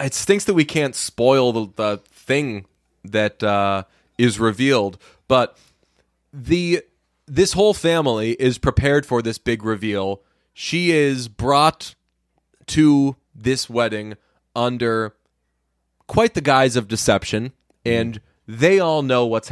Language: English